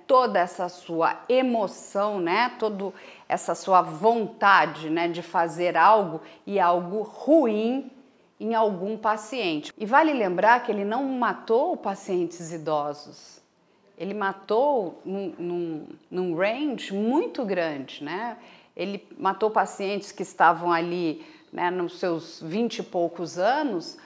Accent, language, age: Brazilian, Portuguese, 40-59